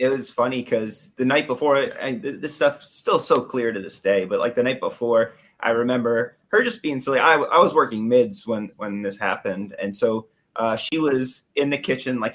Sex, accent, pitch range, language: male, American, 115-160 Hz, English